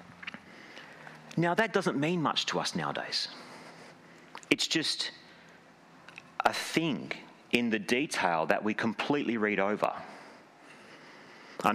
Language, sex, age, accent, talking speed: English, male, 40-59, Australian, 105 wpm